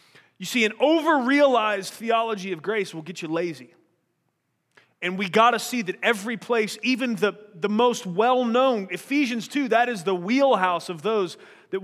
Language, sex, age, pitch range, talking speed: English, male, 30-49, 185-230 Hz, 165 wpm